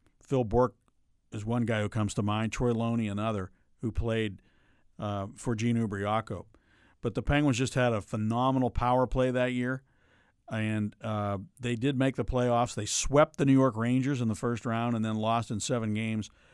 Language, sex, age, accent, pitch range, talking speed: English, male, 50-69, American, 110-130 Hz, 190 wpm